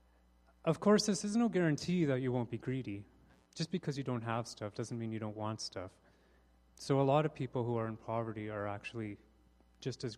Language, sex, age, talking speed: English, male, 30-49, 210 wpm